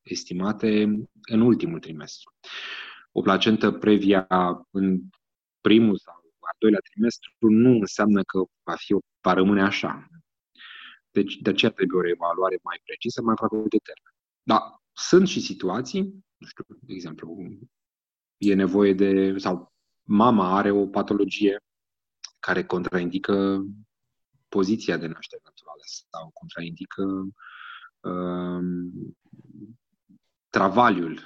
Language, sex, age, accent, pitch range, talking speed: Romanian, male, 30-49, native, 95-110 Hz, 115 wpm